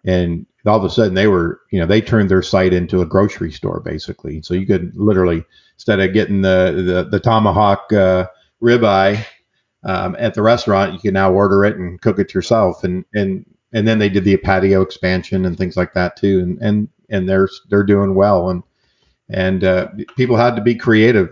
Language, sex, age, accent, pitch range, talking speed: English, male, 50-69, American, 90-105 Hz, 205 wpm